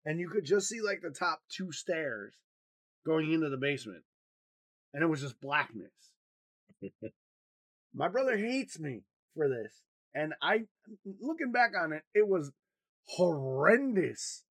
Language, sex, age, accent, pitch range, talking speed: English, male, 20-39, American, 165-260 Hz, 140 wpm